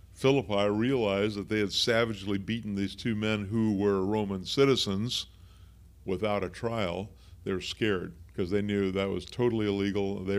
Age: 50-69